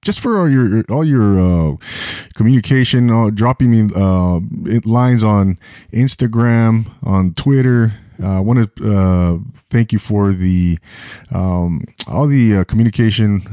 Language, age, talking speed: English, 20-39, 140 wpm